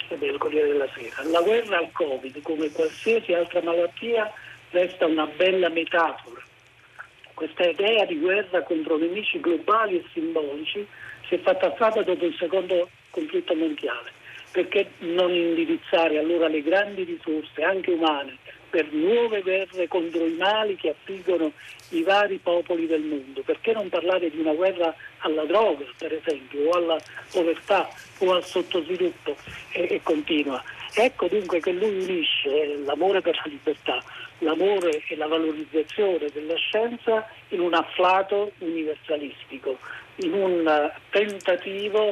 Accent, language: native, Italian